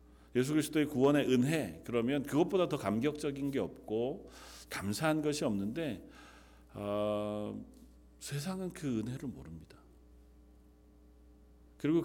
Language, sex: Korean, male